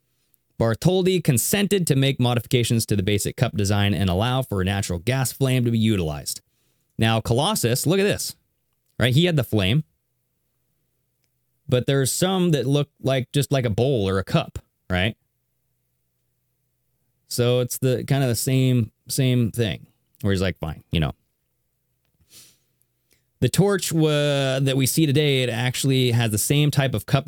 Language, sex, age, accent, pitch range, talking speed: English, male, 20-39, American, 105-140 Hz, 165 wpm